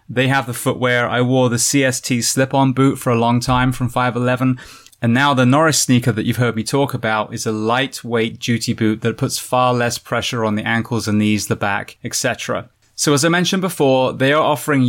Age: 20-39